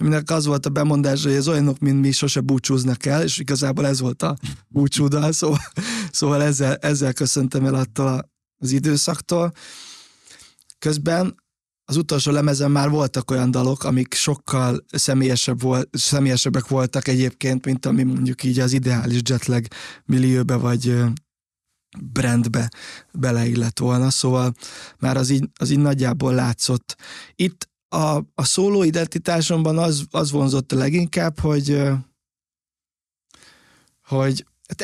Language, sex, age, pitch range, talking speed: Hungarian, male, 20-39, 130-145 Hz, 130 wpm